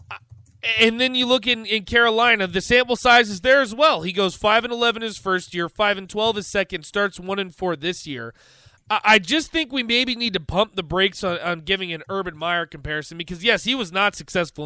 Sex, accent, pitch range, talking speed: male, American, 170-225 Hz, 235 wpm